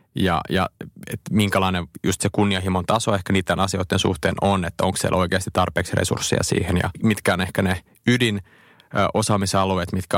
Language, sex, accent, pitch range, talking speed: Finnish, male, native, 95-105 Hz, 155 wpm